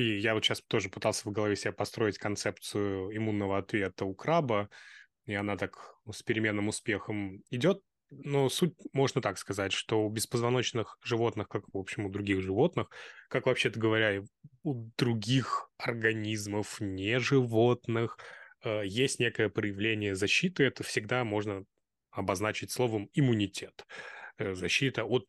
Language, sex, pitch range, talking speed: Russian, male, 105-130 Hz, 135 wpm